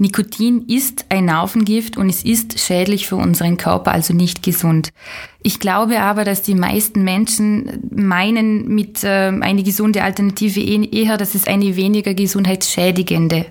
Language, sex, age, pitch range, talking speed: German, female, 20-39, 180-215 Hz, 145 wpm